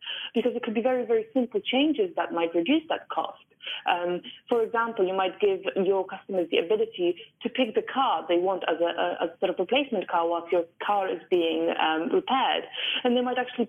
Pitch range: 170-230 Hz